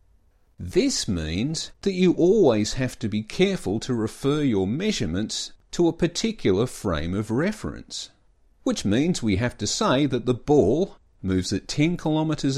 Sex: male